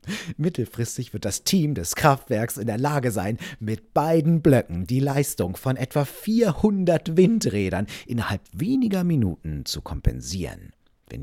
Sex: male